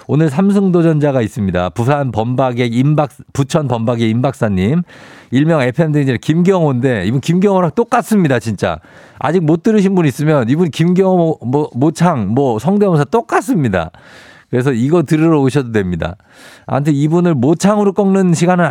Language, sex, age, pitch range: Korean, male, 50-69, 115-165 Hz